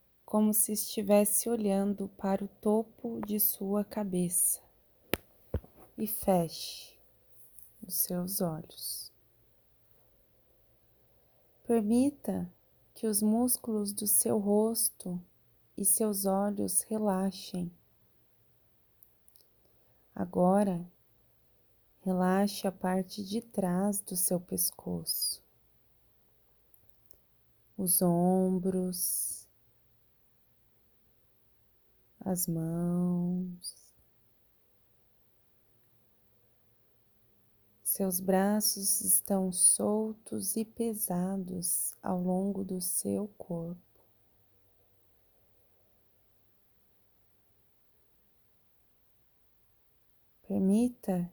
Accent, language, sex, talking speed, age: Brazilian, Portuguese, female, 60 wpm, 20-39